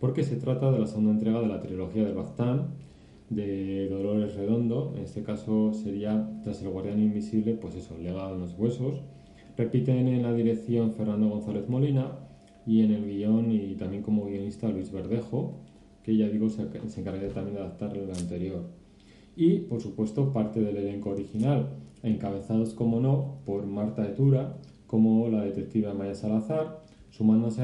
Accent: Spanish